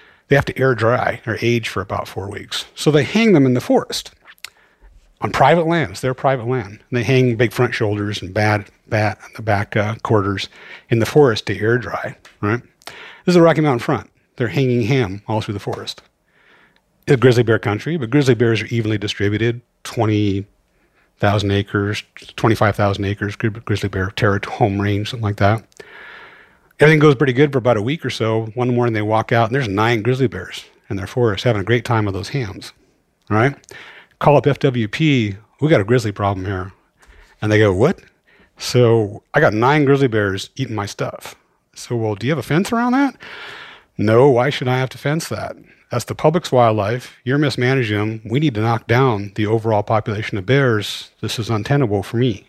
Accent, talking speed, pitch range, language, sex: American, 200 wpm, 105-130 Hz, English, male